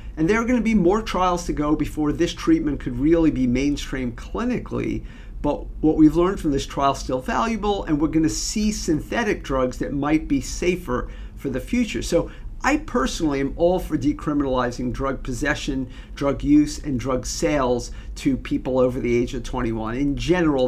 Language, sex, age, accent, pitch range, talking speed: English, male, 50-69, American, 125-155 Hz, 185 wpm